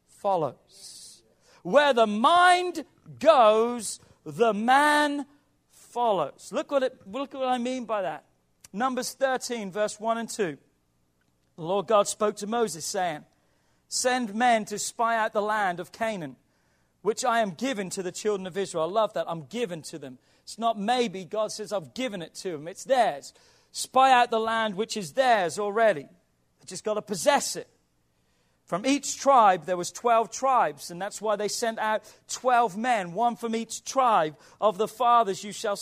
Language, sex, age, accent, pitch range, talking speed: English, male, 40-59, British, 190-250 Hz, 175 wpm